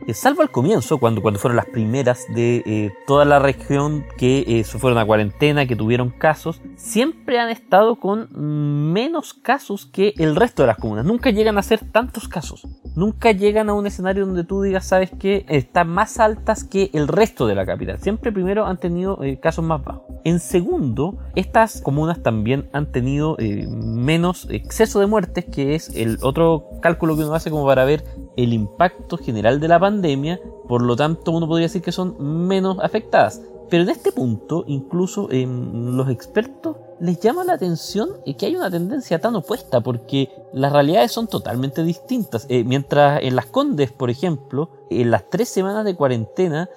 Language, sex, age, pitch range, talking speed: Spanish, male, 20-39, 130-195 Hz, 185 wpm